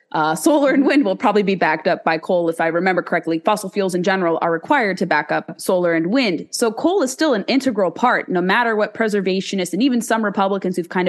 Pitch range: 180-230 Hz